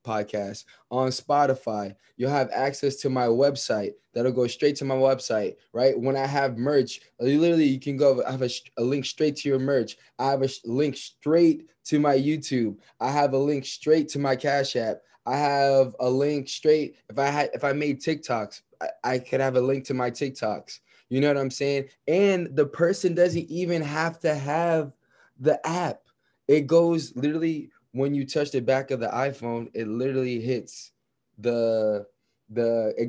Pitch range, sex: 125-150 Hz, male